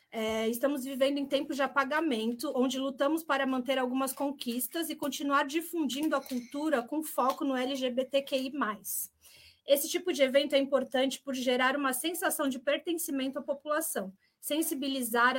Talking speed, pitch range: 140 wpm, 250-295 Hz